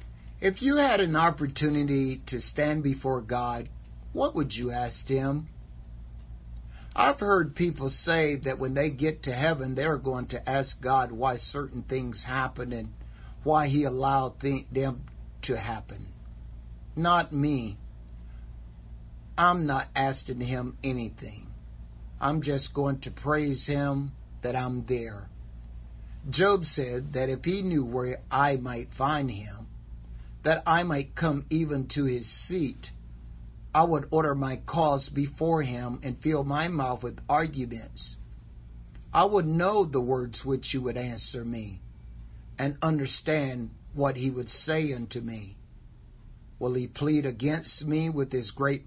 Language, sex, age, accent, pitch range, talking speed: English, male, 50-69, American, 115-150 Hz, 140 wpm